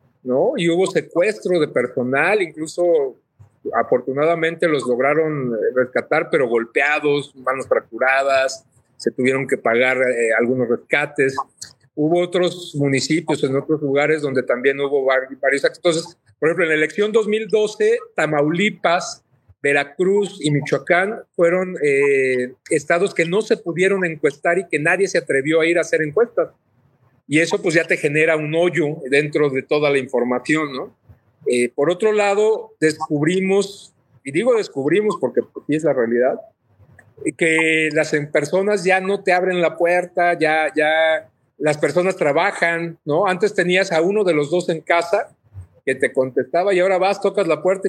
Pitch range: 140-185 Hz